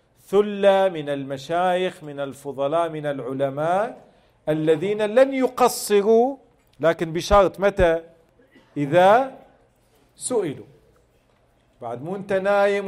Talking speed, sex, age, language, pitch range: 90 wpm, male, 40-59, Arabic, 150-205 Hz